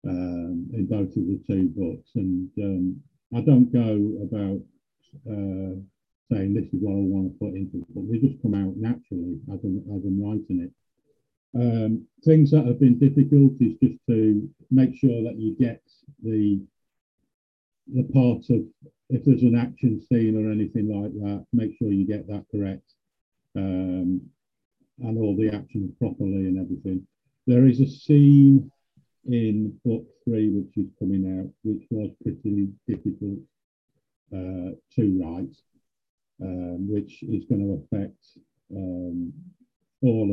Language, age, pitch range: English, 50-69, 95-120 Hz